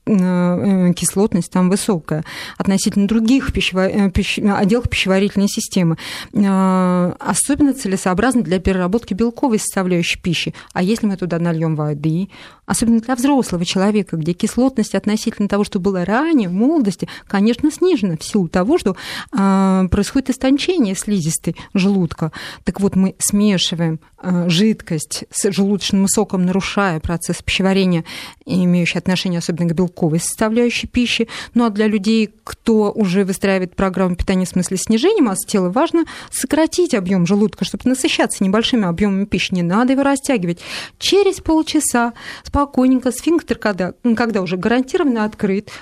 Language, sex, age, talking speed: Russian, female, 30-49, 130 wpm